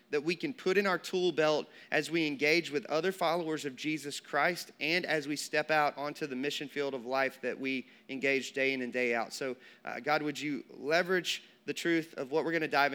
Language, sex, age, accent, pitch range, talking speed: English, male, 30-49, American, 145-185 Hz, 230 wpm